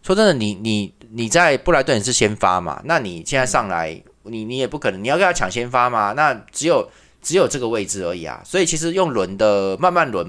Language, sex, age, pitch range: Chinese, male, 20-39, 100-140 Hz